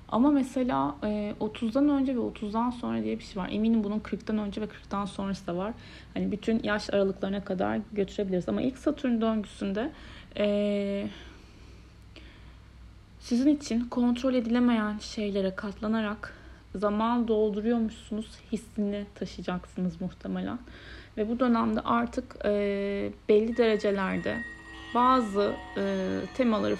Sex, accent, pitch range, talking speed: female, native, 185-235 Hz, 110 wpm